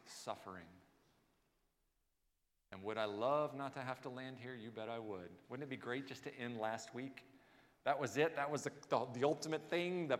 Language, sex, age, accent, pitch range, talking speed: English, male, 40-59, American, 115-165 Hz, 205 wpm